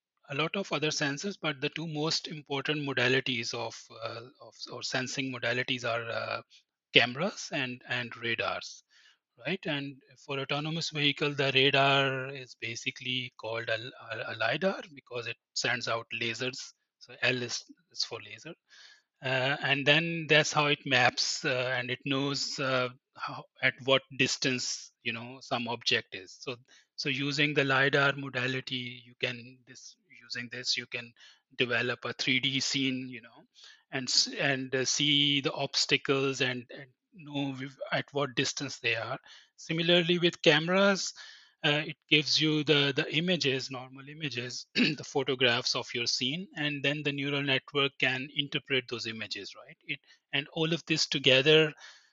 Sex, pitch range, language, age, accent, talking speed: male, 125-150 Hz, English, 30-49, Indian, 155 wpm